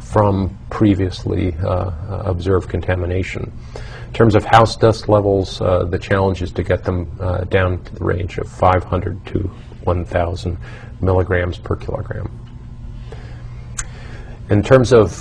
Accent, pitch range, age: American, 90-110 Hz, 50-69